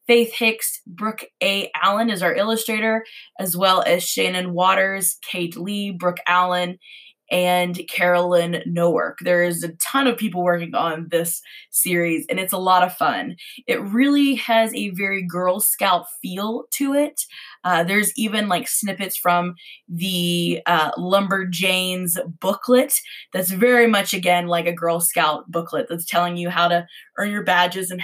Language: English